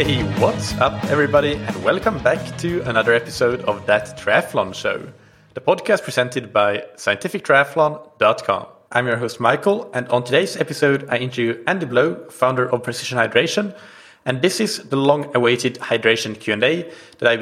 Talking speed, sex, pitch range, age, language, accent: 160 wpm, male, 115-145 Hz, 30-49, English, Norwegian